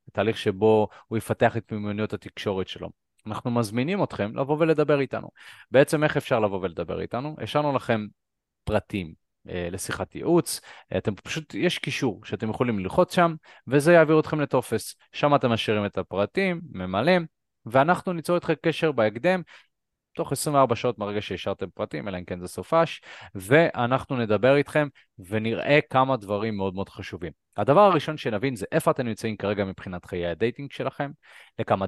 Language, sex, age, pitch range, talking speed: Hebrew, male, 30-49, 100-140 Hz, 150 wpm